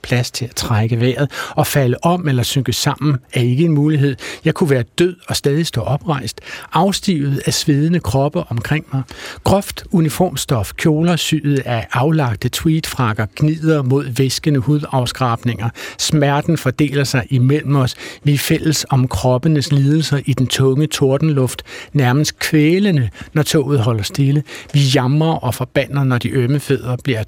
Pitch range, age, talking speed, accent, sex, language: 125-150 Hz, 60-79, 145 wpm, native, male, Danish